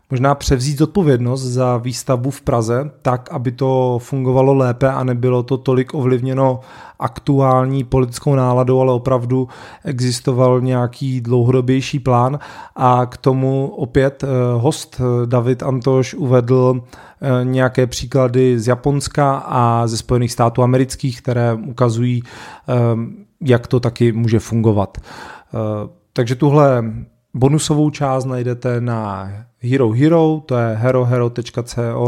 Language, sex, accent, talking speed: Czech, male, native, 115 wpm